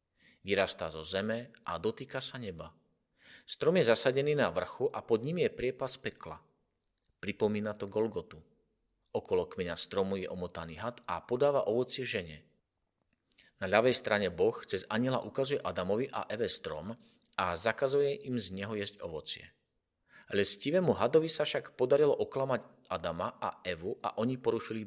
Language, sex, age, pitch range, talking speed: Slovak, male, 40-59, 95-145 Hz, 145 wpm